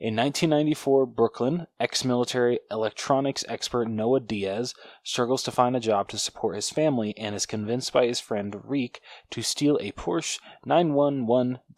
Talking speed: 150 wpm